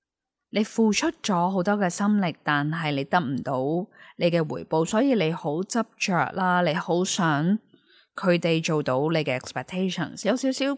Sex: female